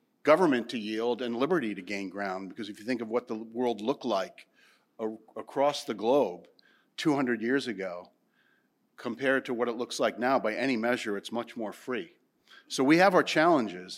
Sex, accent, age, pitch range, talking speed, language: male, American, 50-69, 110-140 Hz, 185 wpm, English